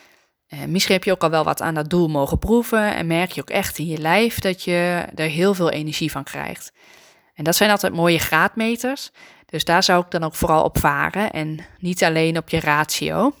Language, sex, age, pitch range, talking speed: Dutch, female, 20-39, 160-200 Hz, 220 wpm